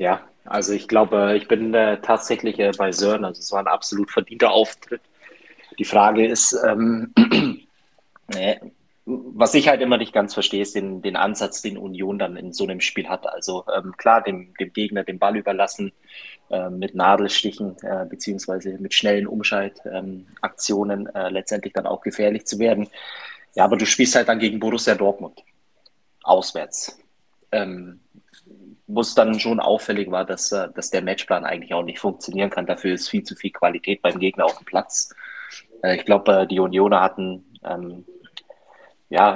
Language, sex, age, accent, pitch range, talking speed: German, male, 20-39, German, 95-105 Hz, 170 wpm